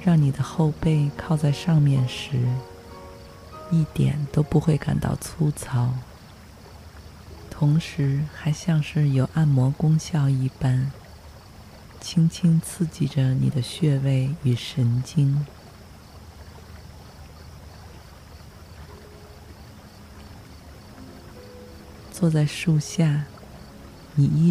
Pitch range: 95-145 Hz